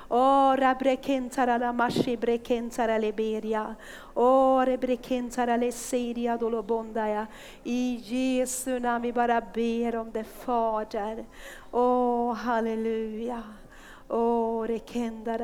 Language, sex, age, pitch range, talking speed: Swedish, female, 40-59, 230-255 Hz, 115 wpm